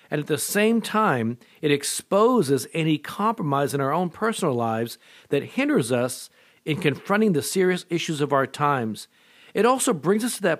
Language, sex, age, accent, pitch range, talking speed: English, male, 50-69, American, 130-175 Hz, 175 wpm